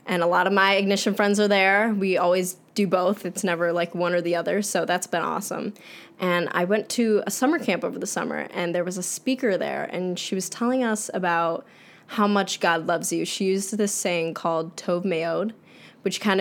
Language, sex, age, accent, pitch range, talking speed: English, female, 10-29, American, 170-200 Hz, 220 wpm